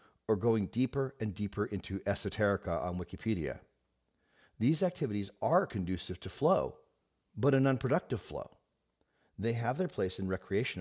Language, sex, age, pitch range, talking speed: English, male, 40-59, 100-130 Hz, 140 wpm